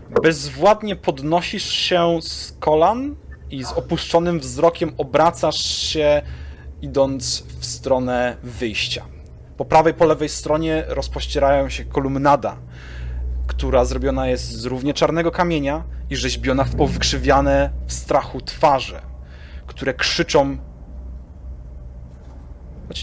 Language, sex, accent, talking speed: Polish, male, native, 100 wpm